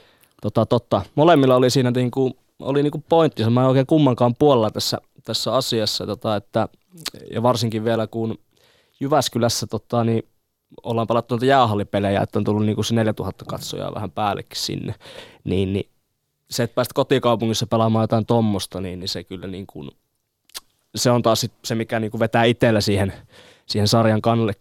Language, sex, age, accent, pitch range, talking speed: Finnish, male, 20-39, native, 110-130 Hz, 150 wpm